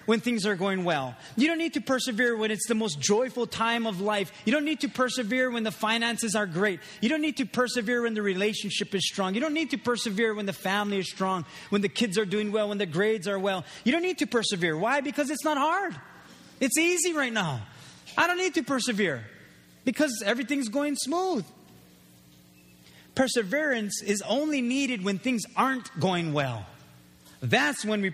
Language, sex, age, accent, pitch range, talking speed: English, male, 30-49, American, 170-245 Hz, 200 wpm